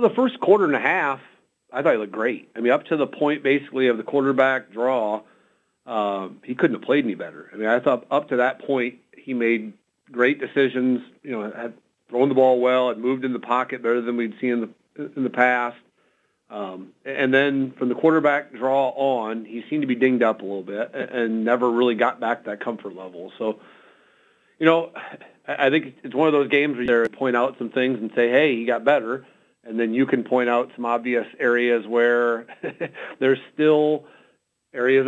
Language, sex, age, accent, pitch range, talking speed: English, male, 40-59, American, 115-135 Hz, 210 wpm